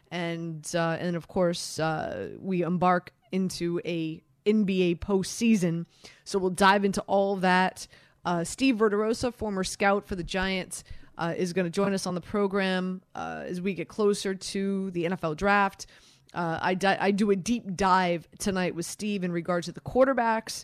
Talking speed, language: 170 wpm, English